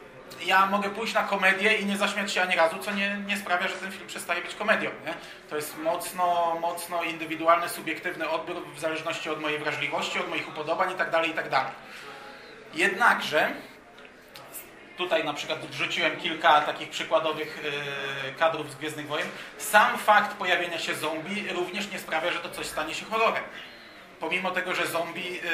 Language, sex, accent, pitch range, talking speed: Polish, male, native, 160-190 Hz, 160 wpm